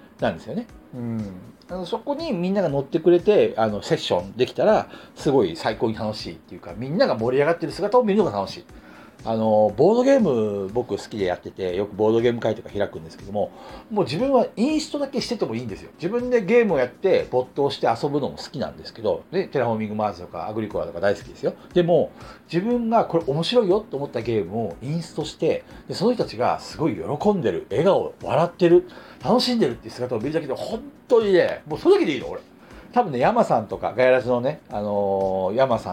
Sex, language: male, Japanese